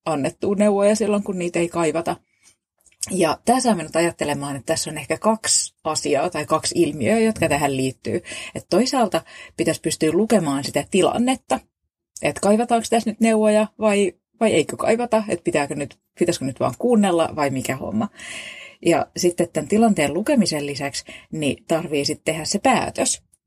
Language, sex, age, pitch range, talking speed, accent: Finnish, female, 30-49, 150-215 Hz, 155 wpm, native